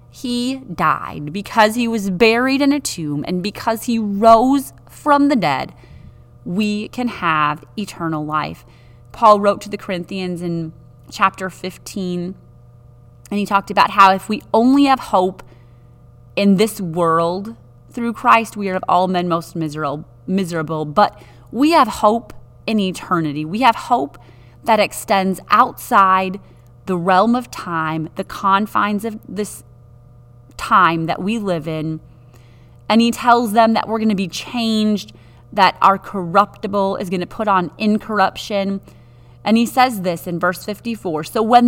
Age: 30-49